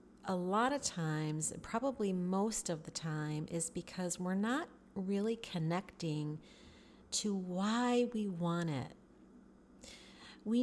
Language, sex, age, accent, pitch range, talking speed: English, female, 30-49, American, 170-210 Hz, 120 wpm